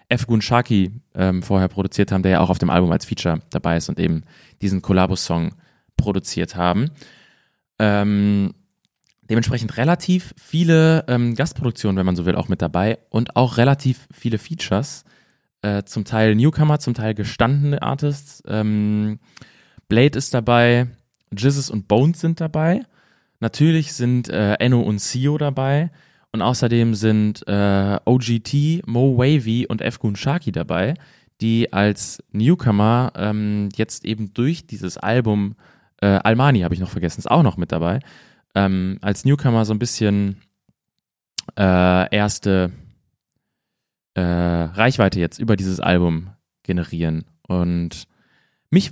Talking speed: 135 wpm